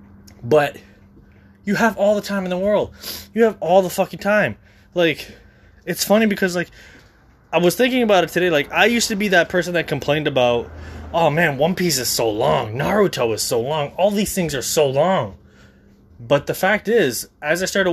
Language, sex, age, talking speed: English, male, 20-39, 200 wpm